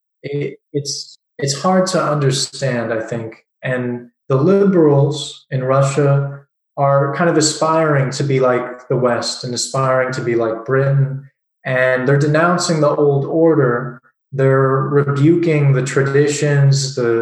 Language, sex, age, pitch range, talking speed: English, male, 20-39, 130-150 Hz, 130 wpm